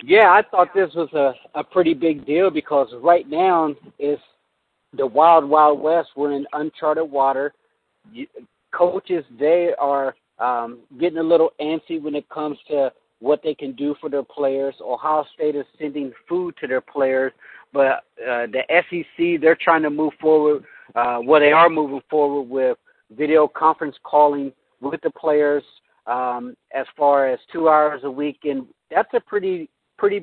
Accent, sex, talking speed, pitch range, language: American, male, 165 wpm, 140-165 Hz, English